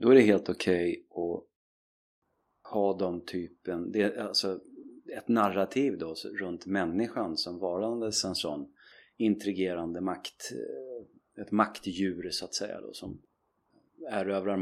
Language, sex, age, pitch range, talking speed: Swedish, male, 30-49, 95-105 Hz, 130 wpm